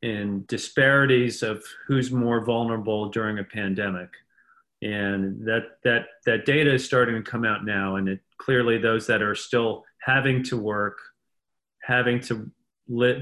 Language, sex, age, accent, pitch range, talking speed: English, male, 40-59, American, 110-140 Hz, 150 wpm